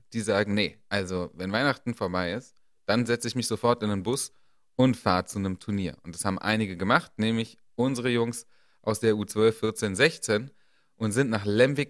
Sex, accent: male, German